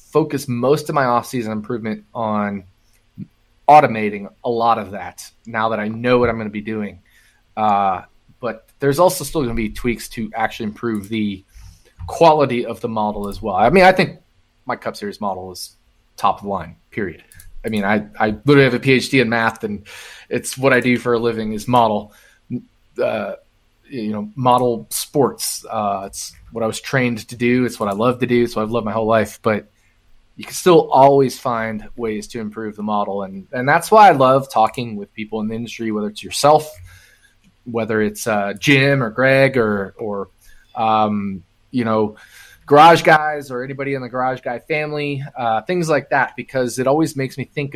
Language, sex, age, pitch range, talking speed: English, male, 20-39, 105-130 Hz, 195 wpm